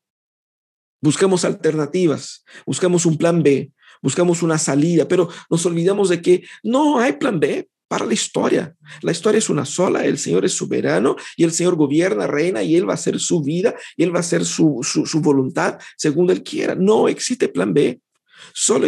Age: 50-69